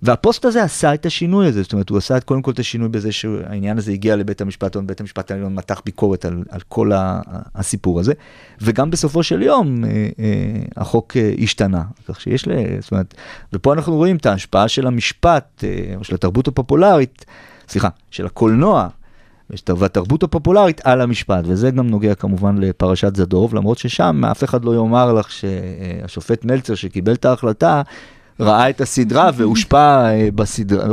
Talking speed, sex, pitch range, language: 165 wpm, male, 100-125 Hz, Hebrew